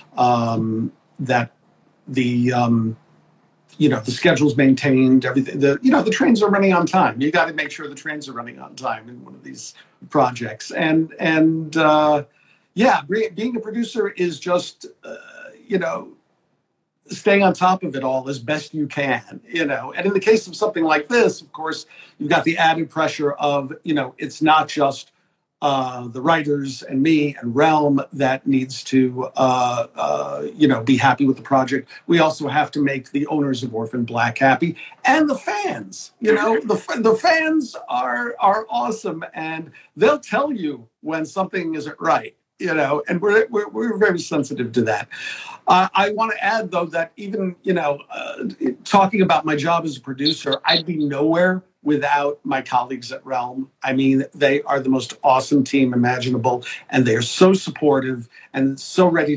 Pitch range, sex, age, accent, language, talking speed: 130-175 Hz, male, 50-69, American, English, 185 wpm